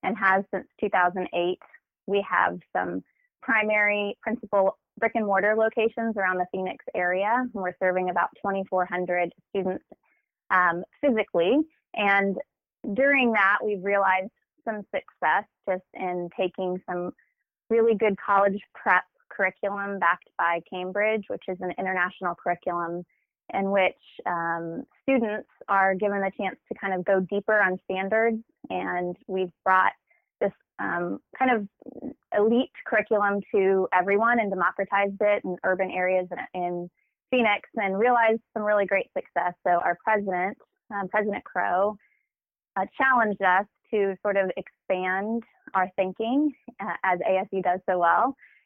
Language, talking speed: English, 135 wpm